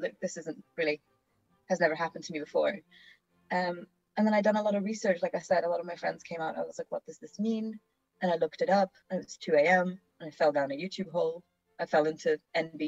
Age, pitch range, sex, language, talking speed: 20-39, 155-215 Hz, female, English, 270 wpm